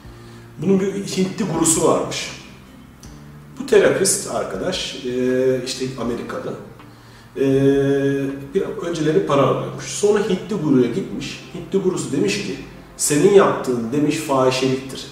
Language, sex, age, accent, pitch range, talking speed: Turkish, male, 40-59, native, 125-185 Hz, 100 wpm